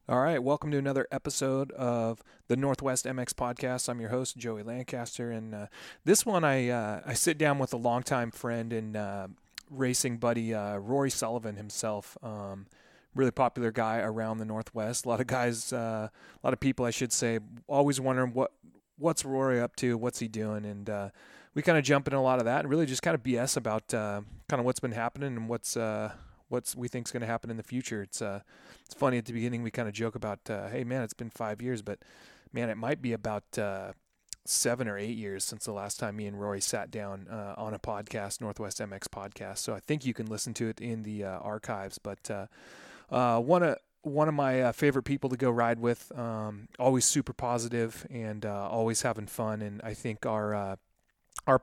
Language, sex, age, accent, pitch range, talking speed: English, male, 30-49, American, 105-130 Hz, 220 wpm